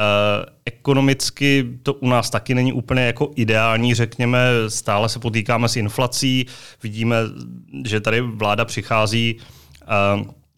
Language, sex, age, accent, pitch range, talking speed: Czech, male, 30-49, native, 110-125 Hz, 125 wpm